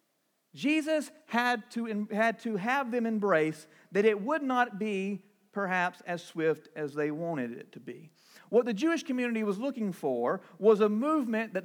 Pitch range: 145-225 Hz